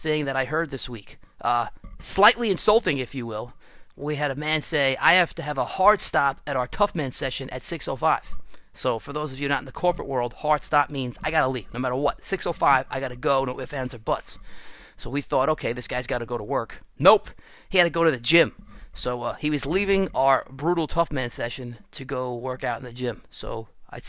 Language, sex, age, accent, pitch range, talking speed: English, male, 30-49, American, 125-155 Hz, 240 wpm